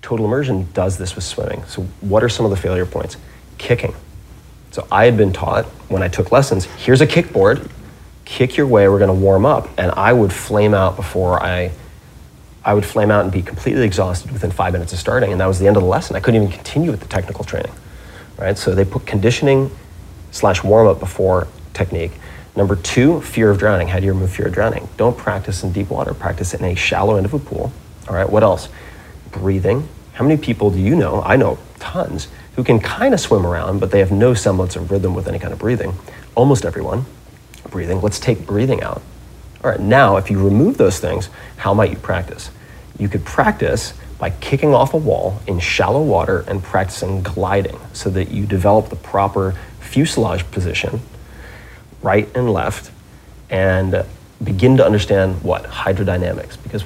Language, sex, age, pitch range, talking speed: English, male, 30-49, 95-110 Hz, 200 wpm